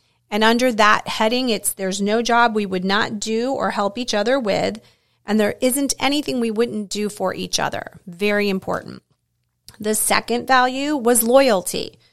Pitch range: 195-240 Hz